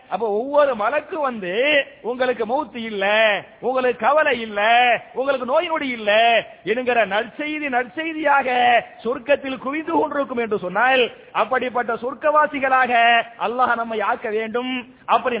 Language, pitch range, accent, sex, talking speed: English, 220-265 Hz, Indian, male, 170 wpm